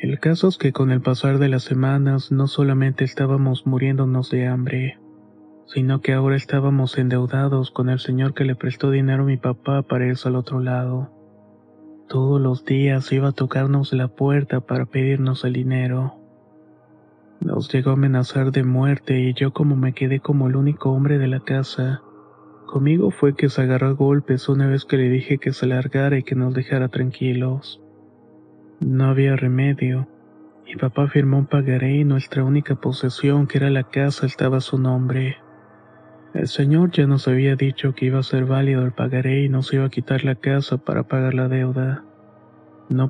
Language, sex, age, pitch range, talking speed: Spanish, male, 30-49, 130-140 Hz, 180 wpm